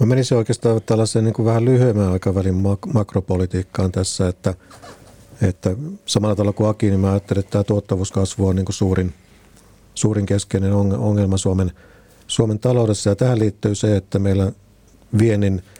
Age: 50-69